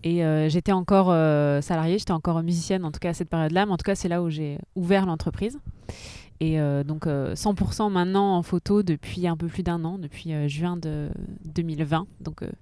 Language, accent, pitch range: French, French, 160-190 Hz